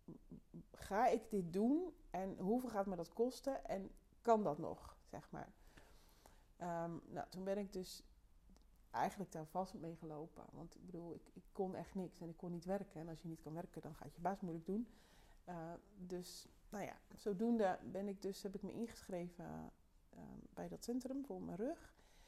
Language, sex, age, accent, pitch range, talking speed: Dutch, female, 40-59, Dutch, 170-210 Hz, 185 wpm